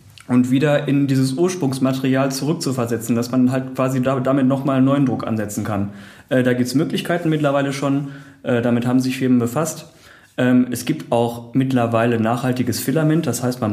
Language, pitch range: German, 120-140 Hz